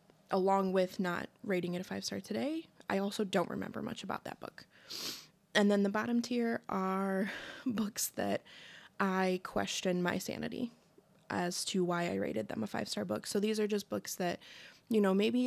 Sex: female